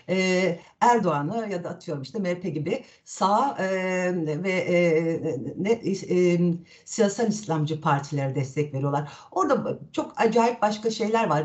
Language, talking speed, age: Turkish, 125 wpm, 60-79